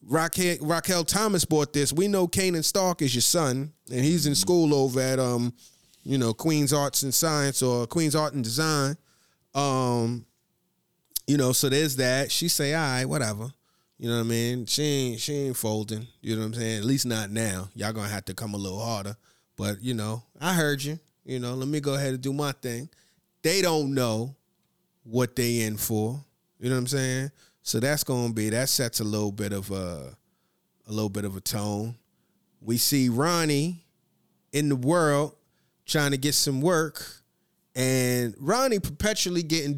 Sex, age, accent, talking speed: male, 30-49, American, 190 wpm